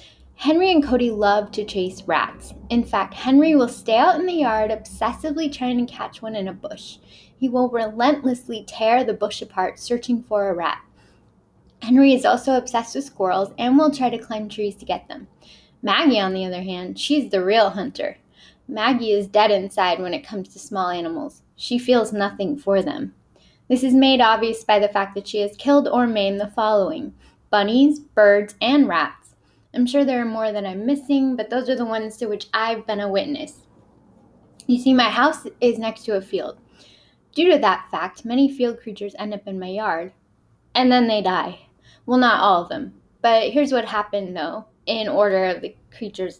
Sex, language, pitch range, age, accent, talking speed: female, English, 205-260 Hz, 10-29, American, 195 wpm